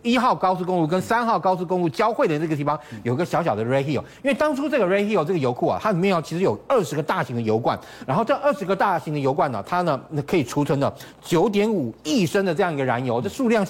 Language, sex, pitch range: Chinese, male, 140-205 Hz